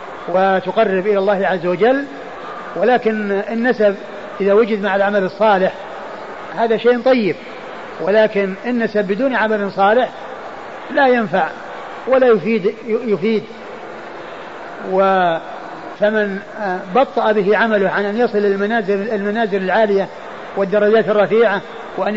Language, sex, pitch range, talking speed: Arabic, male, 190-225 Hz, 110 wpm